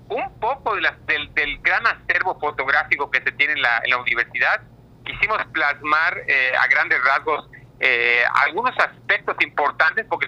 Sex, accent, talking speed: male, Mexican, 165 wpm